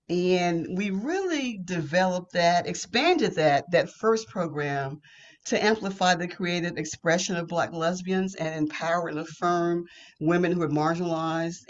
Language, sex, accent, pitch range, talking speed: English, female, American, 170-225 Hz, 135 wpm